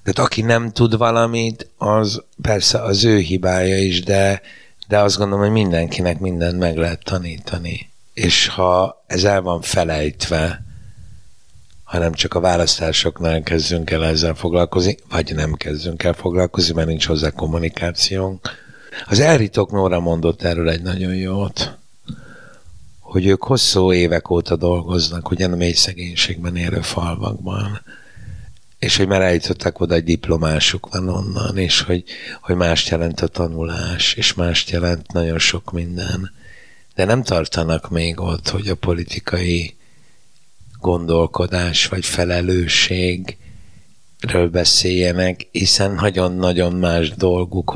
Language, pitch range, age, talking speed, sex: Hungarian, 85-95 Hz, 60-79, 125 wpm, male